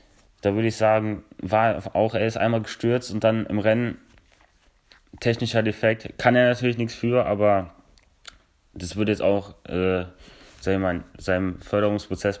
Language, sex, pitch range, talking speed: German, male, 95-110 Hz, 145 wpm